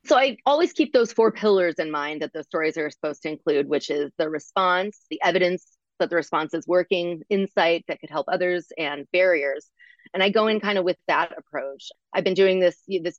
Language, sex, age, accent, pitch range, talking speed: English, female, 30-49, American, 160-210 Hz, 220 wpm